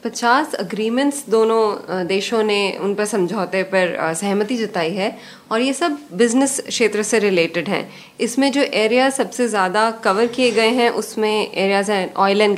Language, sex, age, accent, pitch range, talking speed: English, female, 20-39, Indian, 200-250 Hz, 160 wpm